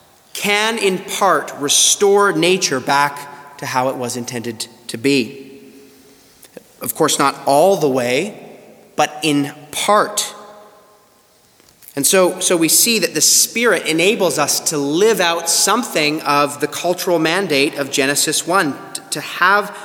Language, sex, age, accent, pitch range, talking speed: English, male, 30-49, American, 135-180 Hz, 135 wpm